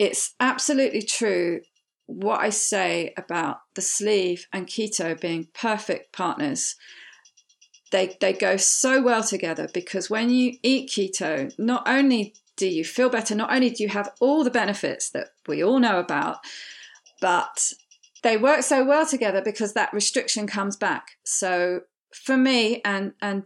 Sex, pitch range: female, 190-250 Hz